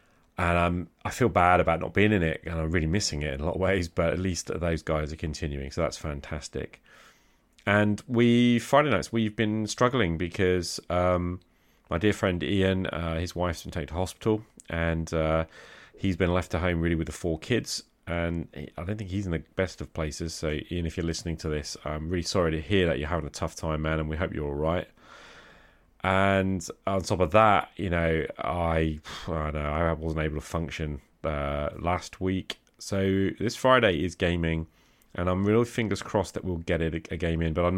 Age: 30-49